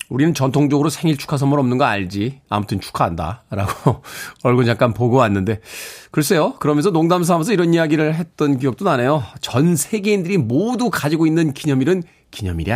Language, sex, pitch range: Korean, male, 125-175 Hz